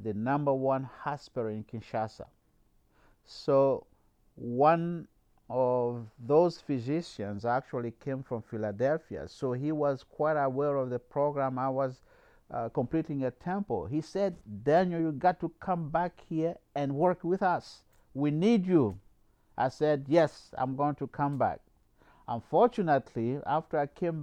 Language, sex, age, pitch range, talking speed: English, male, 50-69, 115-150 Hz, 140 wpm